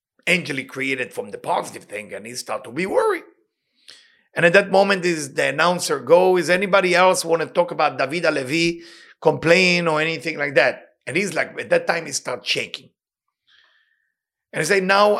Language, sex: English, male